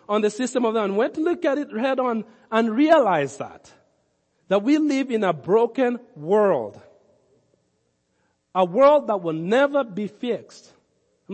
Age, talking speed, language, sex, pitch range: 50-69, 165 wpm, English, male, 185-255 Hz